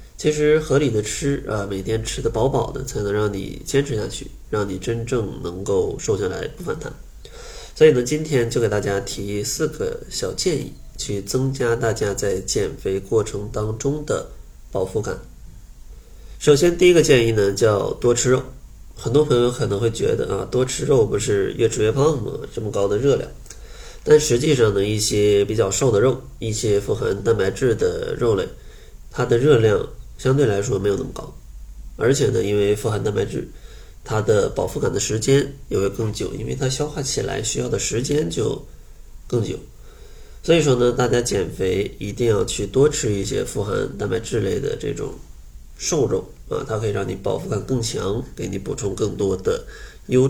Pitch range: 105-140 Hz